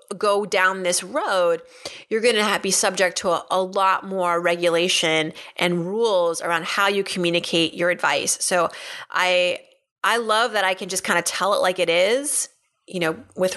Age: 30-49